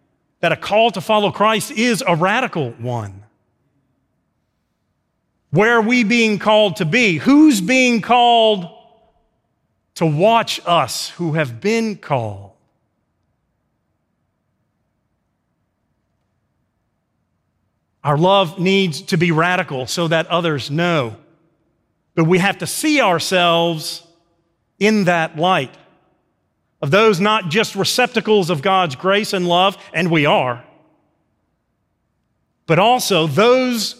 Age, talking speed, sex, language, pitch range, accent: 40-59, 110 wpm, male, English, 155-205 Hz, American